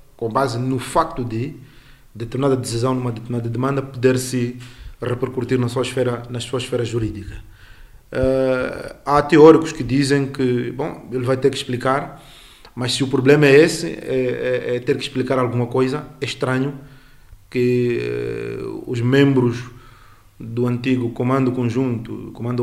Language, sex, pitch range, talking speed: Portuguese, male, 120-135 Hz, 140 wpm